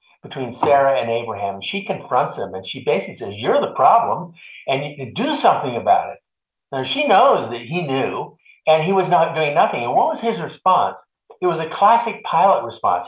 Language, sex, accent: English, male, American